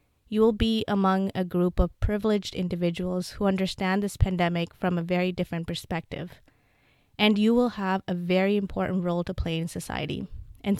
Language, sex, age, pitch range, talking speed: English, female, 20-39, 175-205 Hz, 170 wpm